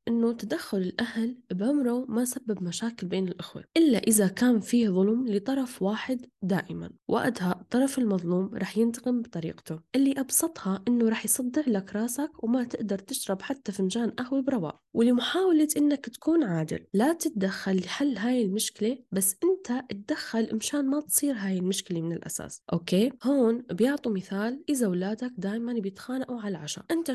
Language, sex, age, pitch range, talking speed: Arabic, female, 10-29, 195-255 Hz, 150 wpm